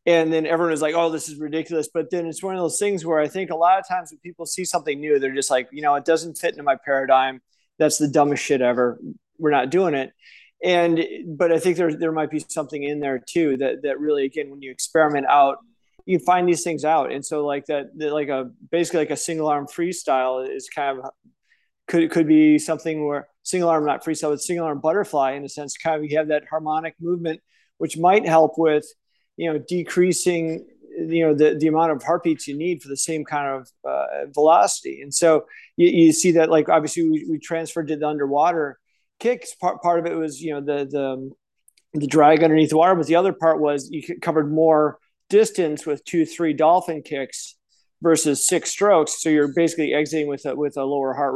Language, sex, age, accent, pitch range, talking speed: English, male, 30-49, American, 145-170 Hz, 225 wpm